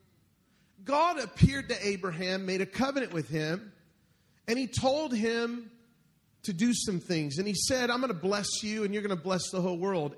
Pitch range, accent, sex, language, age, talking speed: 175-225 Hz, American, male, English, 40-59, 195 wpm